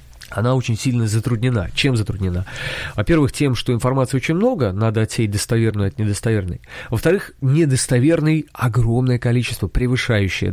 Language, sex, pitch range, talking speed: Russian, male, 105-135 Hz, 125 wpm